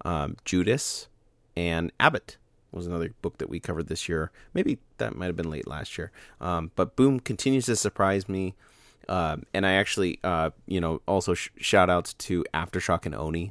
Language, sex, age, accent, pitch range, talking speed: English, male, 30-49, American, 85-105 Hz, 180 wpm